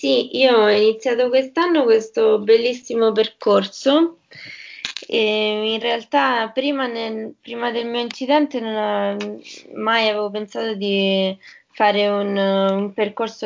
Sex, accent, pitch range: female, native, 200-245 Hz